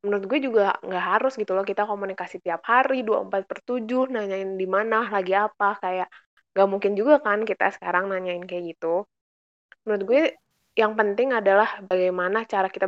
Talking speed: 165 wpm